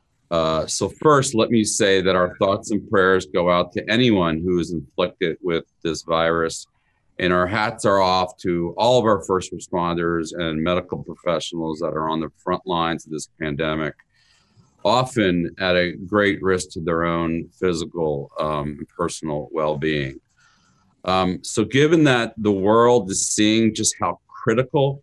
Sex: male